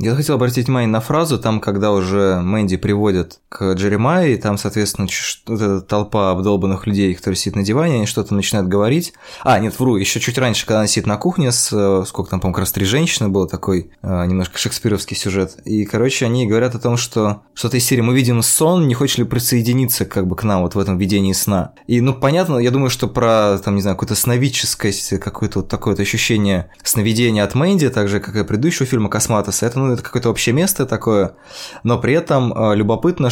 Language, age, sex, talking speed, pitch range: Russian, 20-39, male, 210 wpm, 105-130 Hz